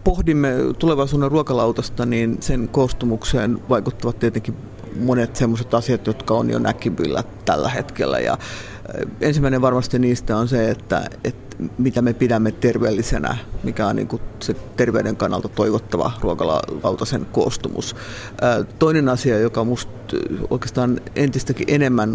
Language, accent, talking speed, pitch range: Finnish, native, 115 wpm, 110-135 Hz